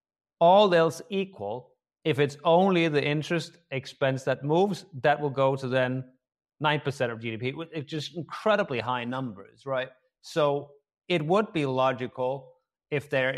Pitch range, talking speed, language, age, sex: 115-145 Hz, 145 wpm, English, 30-49, male